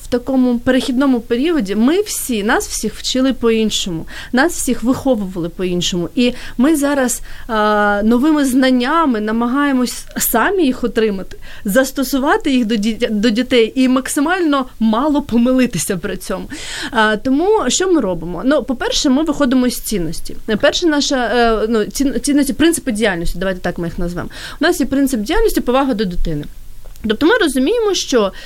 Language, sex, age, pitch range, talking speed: Ukrainian, female, 30-49, 215-280 Hz, 150 wpm